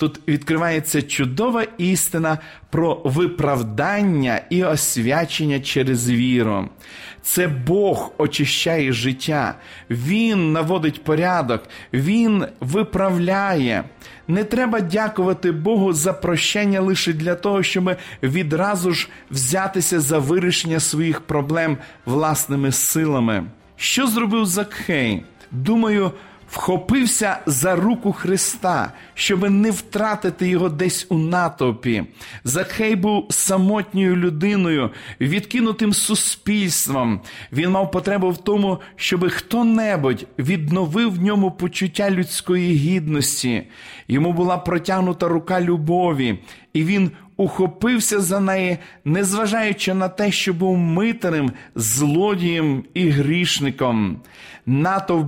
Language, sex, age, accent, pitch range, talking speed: Ukrainian, male, 40-59, native, 150-195 Hz, 100 wpm